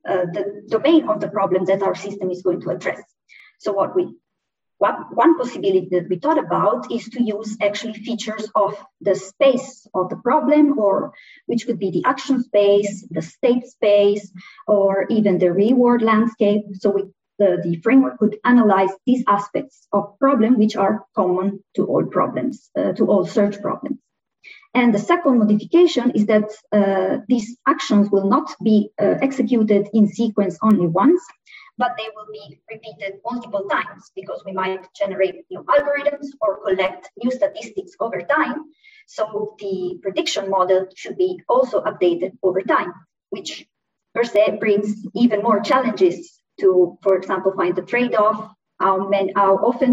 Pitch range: 200-270 Hz